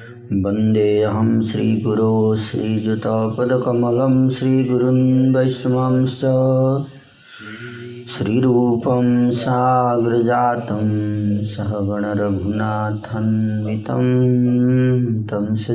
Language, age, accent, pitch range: Hindi, 30-49, native, 110-125 Hz